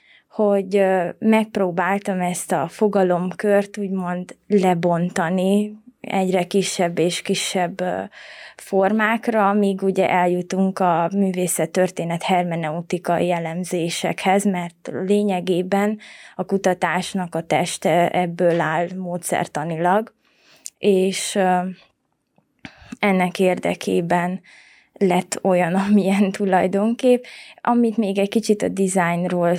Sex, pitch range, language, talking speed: female, 180-200 Hz, Hungarian, 85 wpm